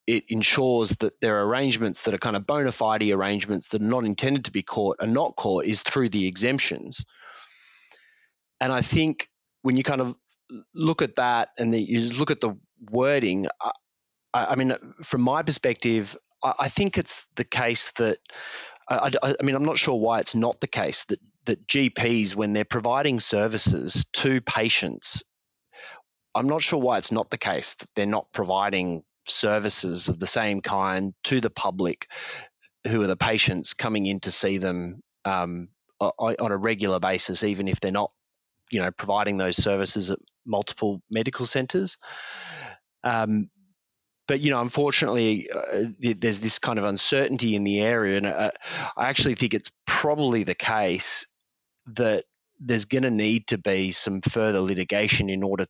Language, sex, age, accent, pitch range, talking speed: English, male, 30-49, Australian, 100-135 Hz, 170 wpm